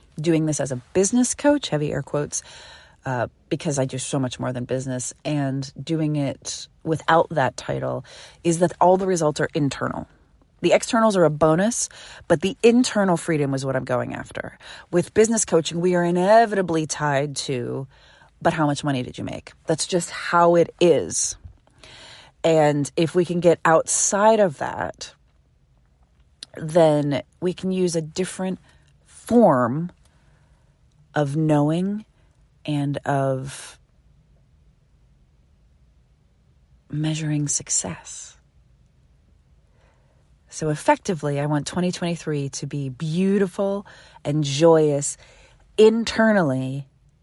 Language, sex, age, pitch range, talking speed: English, female, 30-49, 135-175 Hz, 125 wpm